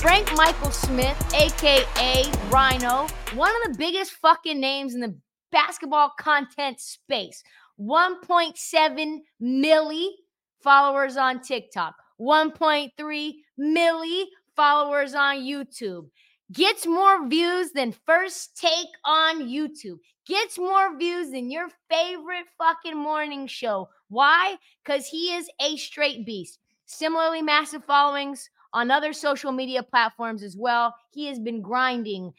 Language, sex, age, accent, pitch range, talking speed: English, female, 20-39, American, 230-310 Hz, 120 wpm